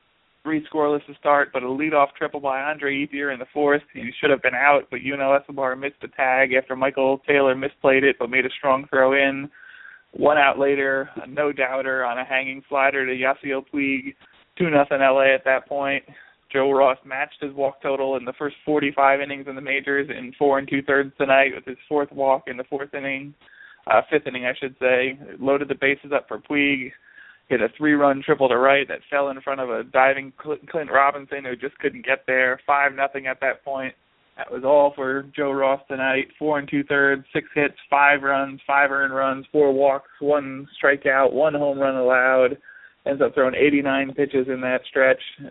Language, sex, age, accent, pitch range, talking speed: English, male, 20-39, American, 135-145 Hz, 195 wpm